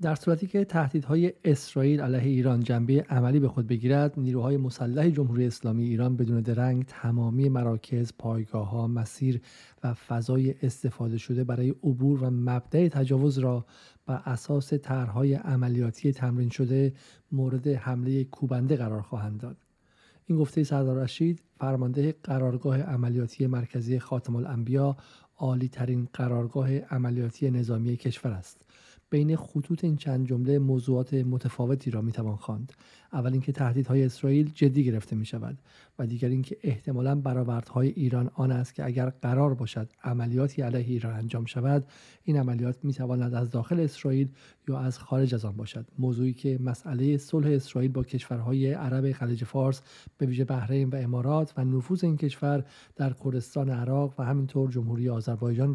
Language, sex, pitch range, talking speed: Persian, male, 125-140 Hz, 145 wpm